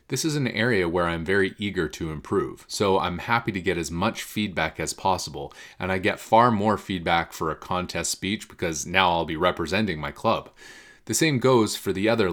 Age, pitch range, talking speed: 30-49, 90-115 Hz, 210 wpm